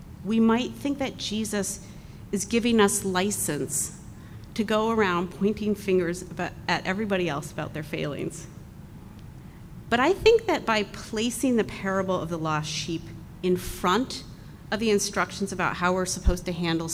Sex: female